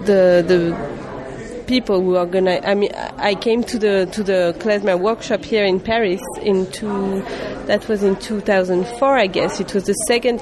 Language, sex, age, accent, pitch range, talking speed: English, female, 30-49, French, 185-220 Hz, 180 wpm